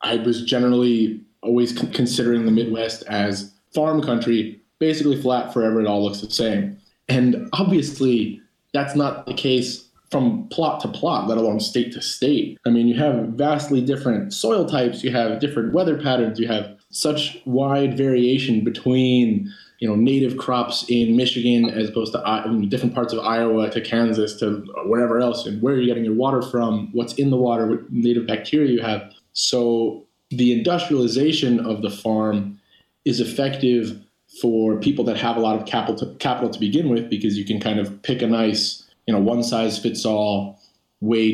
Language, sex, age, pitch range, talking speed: English, male, 20-39, 110-125 Hz, 180 wpm